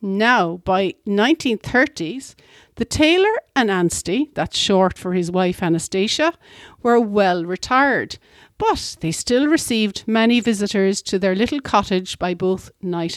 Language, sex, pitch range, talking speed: English, female, 185-275 Hz, 130 wpm